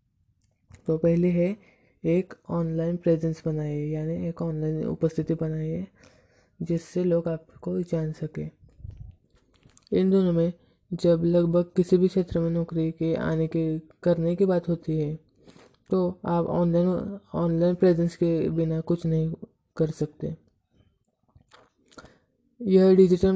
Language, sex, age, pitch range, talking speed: Hindi, female, 20-39, 160-180 Hz, 125 wpm